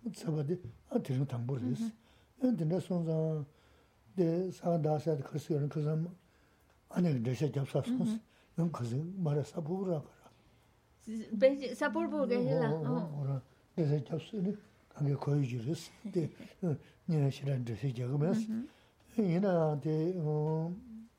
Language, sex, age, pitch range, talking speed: Spanish, male, 60-79, 135-200 Hz, 35 wpm